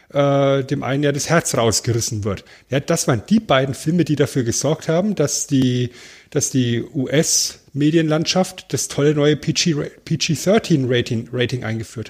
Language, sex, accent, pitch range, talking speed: German, male, German, 125-170 Hz, 145 wpm